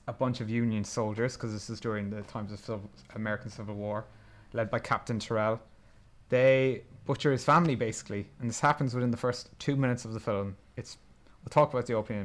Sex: male